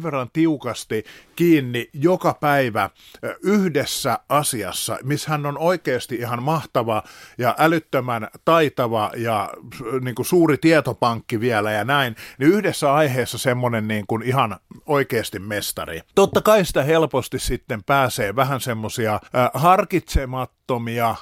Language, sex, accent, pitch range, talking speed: Finnish, male, native, 125-165 Hz, 115 wpm